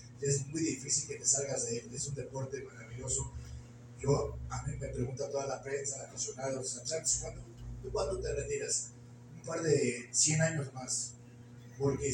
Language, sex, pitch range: Spanish, male, 120-145 Hz